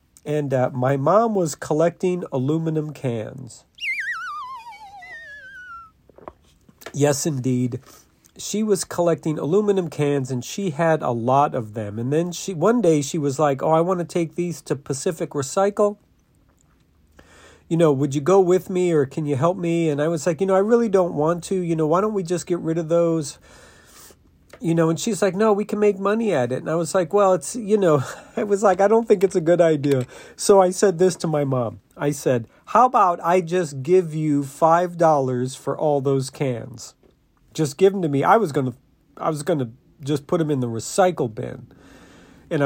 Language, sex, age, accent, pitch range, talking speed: English, male, 40-59, American, 145-195 Hz, 200 wpm